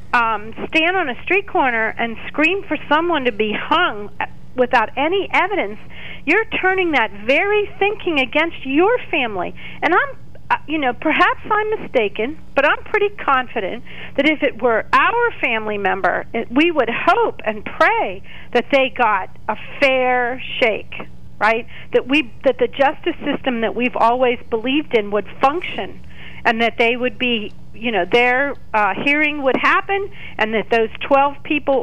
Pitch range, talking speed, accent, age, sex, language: 225-320 Hz, 160 wpm, American, 50-69, female, English